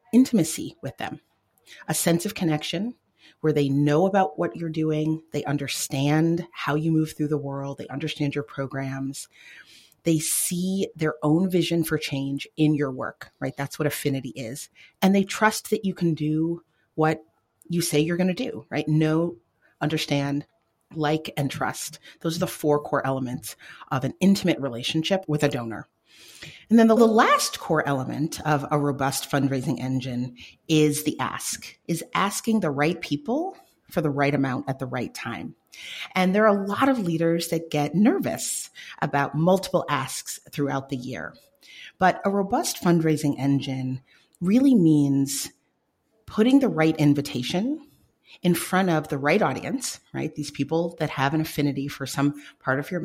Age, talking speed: 30-49, 165 wpm